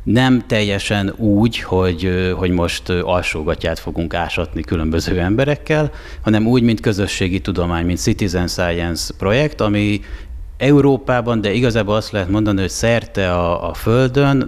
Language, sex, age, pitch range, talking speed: Hungarian, male, 30-49, 85-110 Hz, 135 wpm